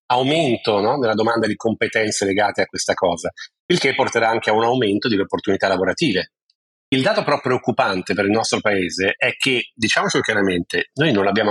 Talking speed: 185 wpm